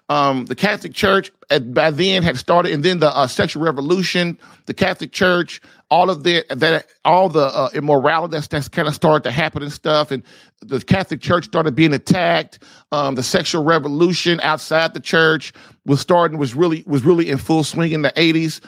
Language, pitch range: English, 145-180 Hz